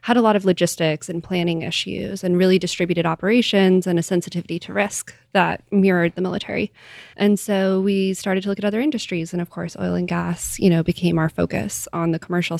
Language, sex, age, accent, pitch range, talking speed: English, female, 20-39, American, 165-190 Hz, 210 wpm